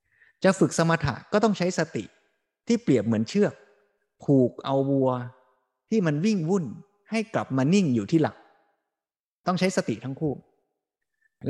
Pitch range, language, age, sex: 120-165 Hz, Thai, 20-39, male